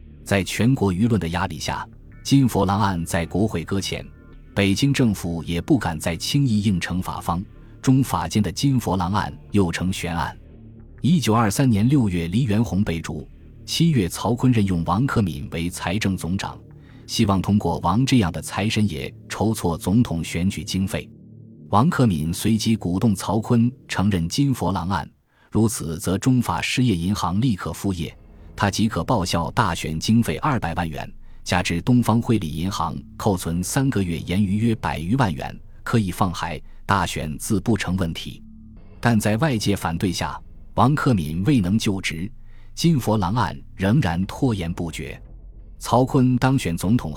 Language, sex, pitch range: Chinese, male, 85-115 Hz